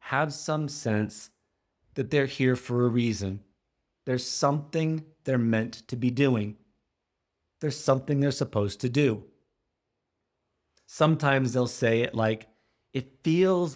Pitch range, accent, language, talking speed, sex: 110-130 Hz, American, English, 125 wpm, male